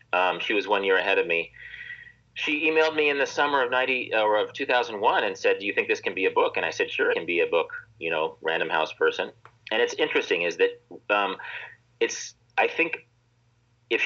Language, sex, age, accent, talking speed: English, male, 40-59, American, 225 wpm